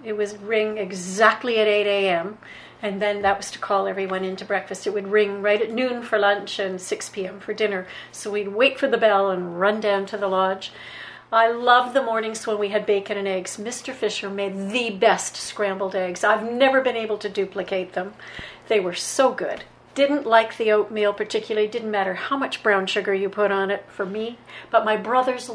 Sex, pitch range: female, 200-230 Hz